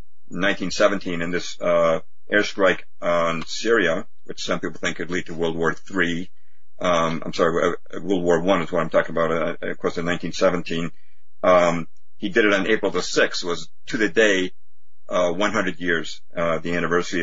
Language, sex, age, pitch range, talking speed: English, male, 50-69, 85-100 Hz, 190 wpm